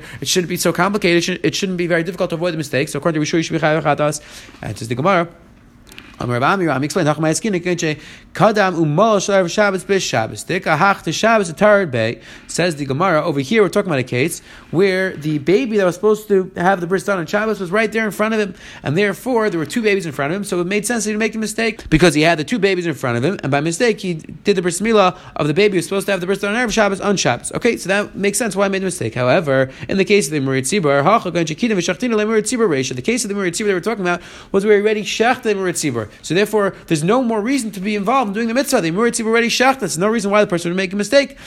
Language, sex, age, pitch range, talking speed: English, male, 30-49, 160-215 Hz, 245 wpm